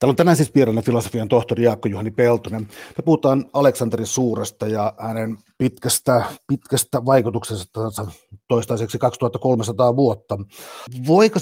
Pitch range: 105-125 Hz